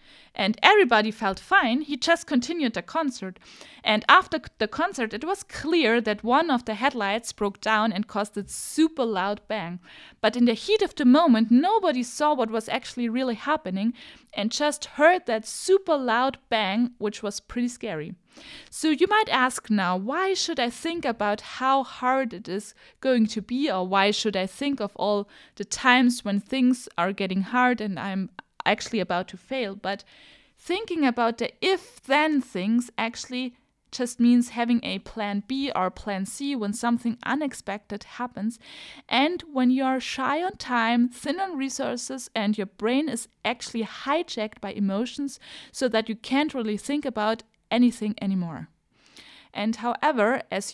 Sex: female